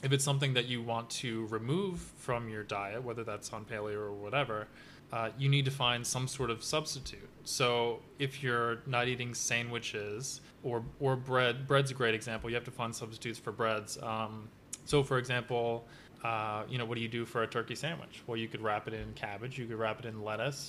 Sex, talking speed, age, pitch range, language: male, 215 wpm, 20-39, 115-135 Hz, English